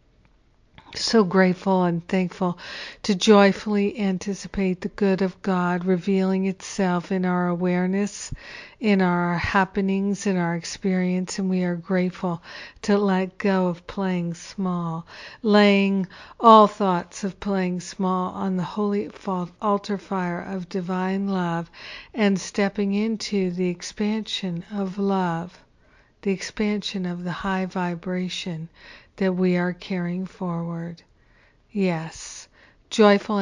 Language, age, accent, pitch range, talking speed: English, 60-79, American, 180-200 Hz, 120 wpm